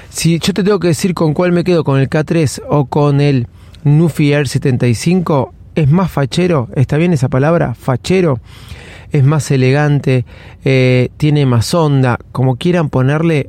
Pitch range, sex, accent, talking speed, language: 125-165 Hz, male, Argentinian, 165 wpm, Spanish